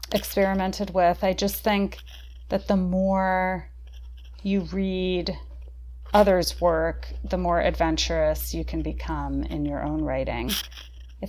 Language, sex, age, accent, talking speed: English, female, 30-49, American, 120 wpm